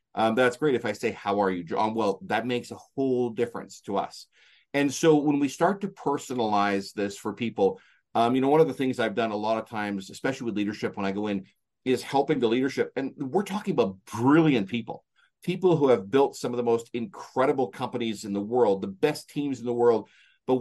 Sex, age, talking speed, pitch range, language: male, 40-59, 225 wpm, 115-145 Hz, English